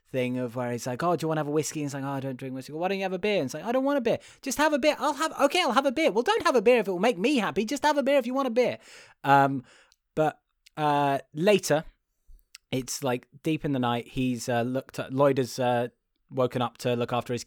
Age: 20-39